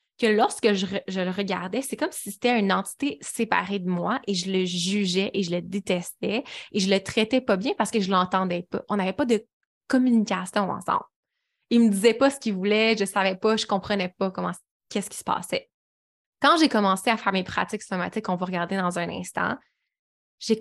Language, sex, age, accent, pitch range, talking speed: French, female, 20-39, Canadian, 195-245 Hz, 210 wpm